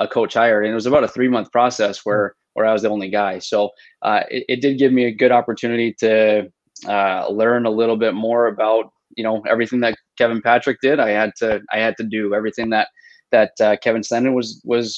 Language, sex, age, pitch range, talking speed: English, male, 20-39, 105-120 Hz, 225 wpm